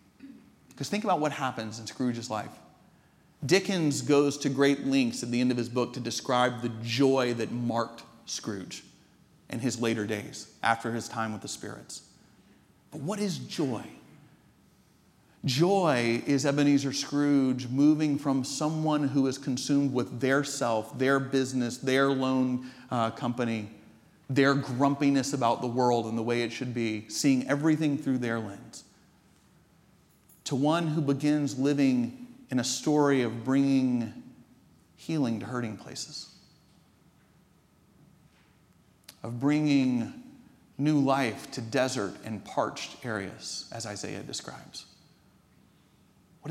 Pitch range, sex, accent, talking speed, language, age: 120-145 Hz, male, American, 130 wpm, English, 40-59